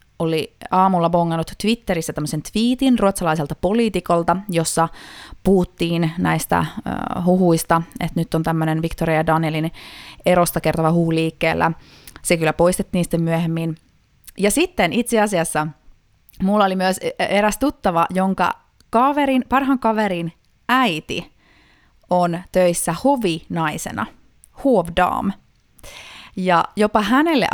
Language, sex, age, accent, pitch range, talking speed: Finnish, female, 20-39, native, 160-200 Hz, 105 wpm